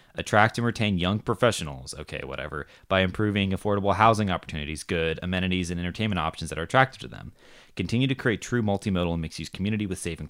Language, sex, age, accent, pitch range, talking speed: English, male, 20-39, American, 85-105 Hz, 200 wpm